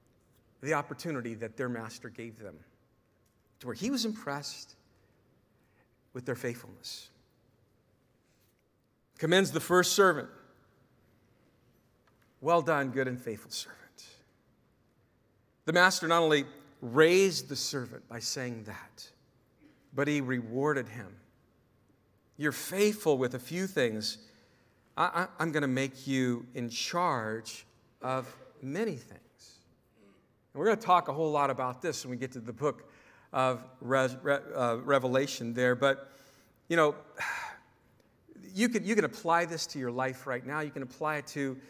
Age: 50-69